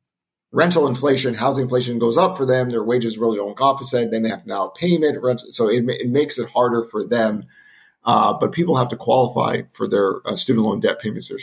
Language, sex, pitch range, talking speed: English, male, 110-130 Hz, 215 wpm